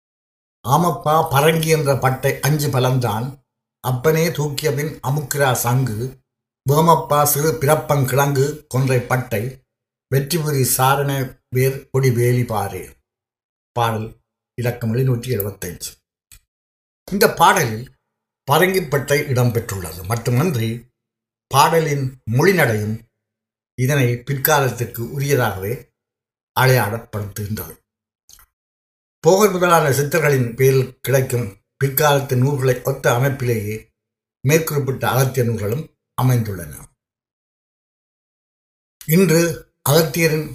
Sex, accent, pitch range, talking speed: male, native, 115-145 Hz, 75 wpm